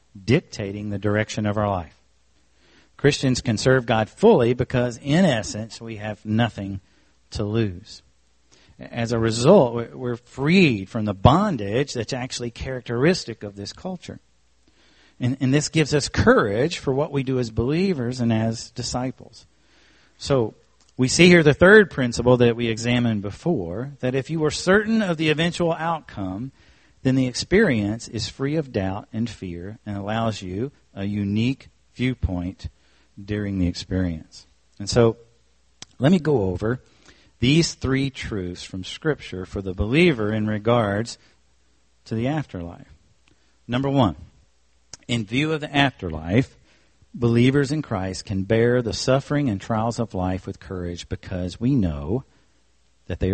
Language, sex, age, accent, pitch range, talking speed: English, male, 50-69, American, 95-130 Hz, 145 wpm